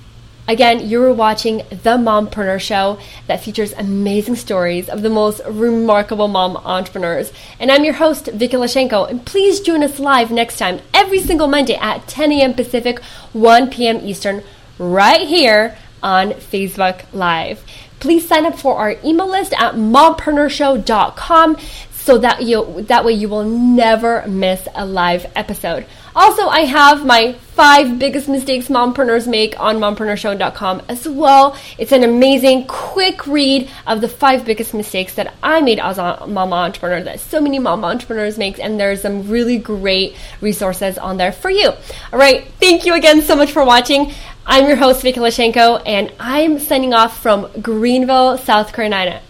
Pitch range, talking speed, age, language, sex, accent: 210-285 Hz, 160 wpm, 20-39, English, female, American